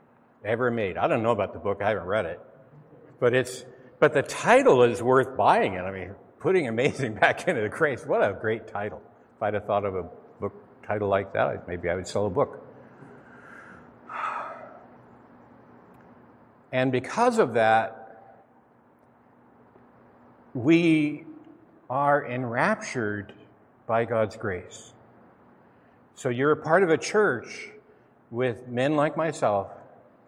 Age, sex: 60-79, male